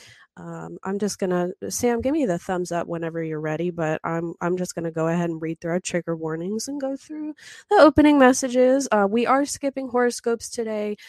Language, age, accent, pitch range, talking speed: English, 20-39, American, 180-235 Hz, 205 wpm